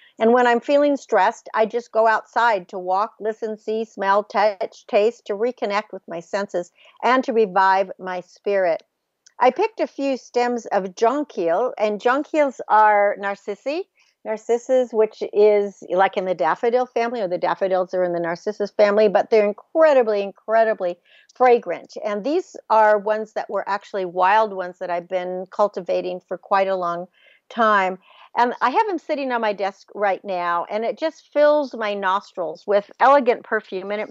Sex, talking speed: female, 170 wpm